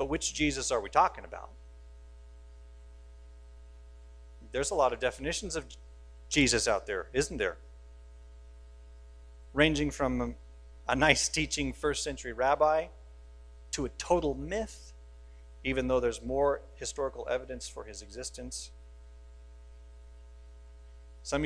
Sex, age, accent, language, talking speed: male, 40-59, American, English, 110 wpm